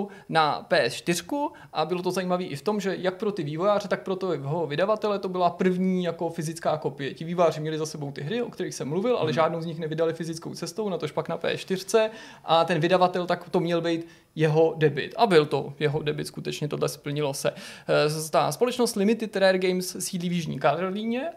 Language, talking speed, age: Czech, 210 wpm, 20-39